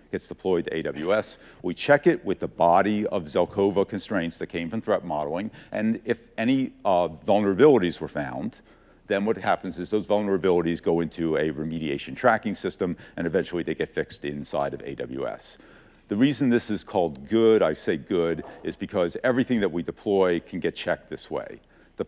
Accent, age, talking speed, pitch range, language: American, 50-69, 180 wpm, 85-120 Hz, English